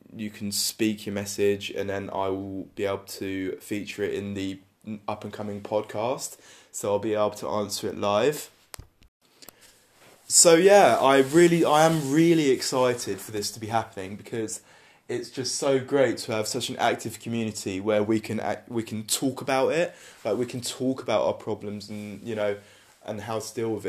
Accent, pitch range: British, 105-130 Hz